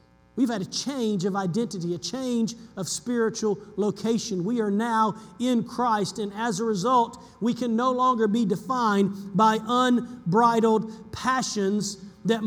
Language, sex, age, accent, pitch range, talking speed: English, male, 40-59, American, 195-240 Hz, 145 wpm